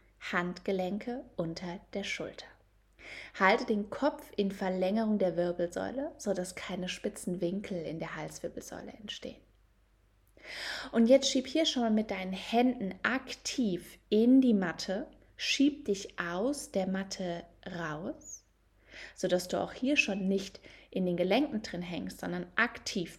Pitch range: 180-230 Hz